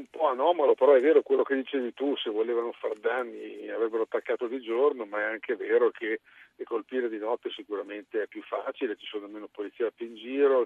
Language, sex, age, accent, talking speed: Italian, male, 50-69, native, 205 wpm